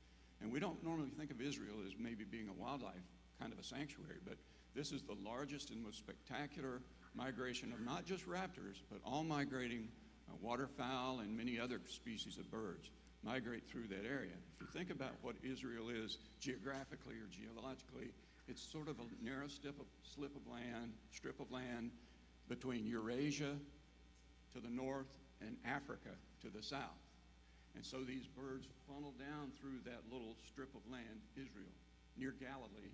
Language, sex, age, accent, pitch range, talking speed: English, male, 60-79, American, 100-140 Hz, 170 wpm